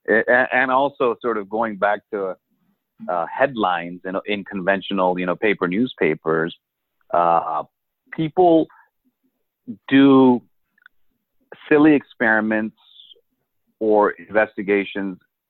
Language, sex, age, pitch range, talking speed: English, male, 50-69, 100-150 Hz, 90 wpm